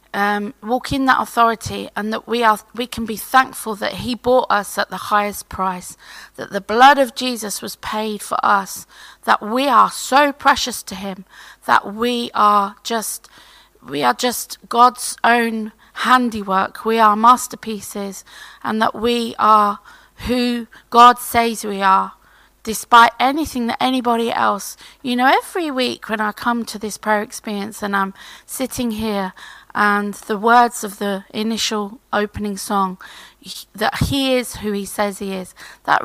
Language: English